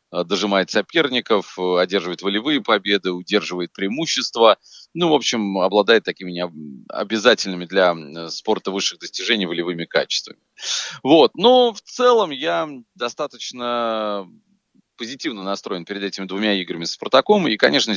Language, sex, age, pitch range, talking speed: Russian, male, 30-49, 90-120 Hz, 115 wpm